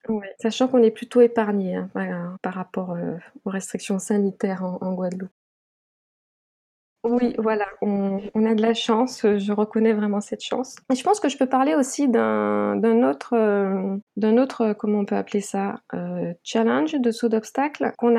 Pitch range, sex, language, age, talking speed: 200-240 Hz, female, French, 20-39, 180 wpm